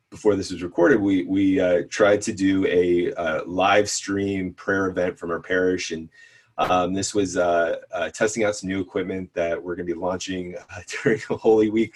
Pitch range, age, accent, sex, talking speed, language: 90-115 Hz, 30-49, American, male, 200 wpm, English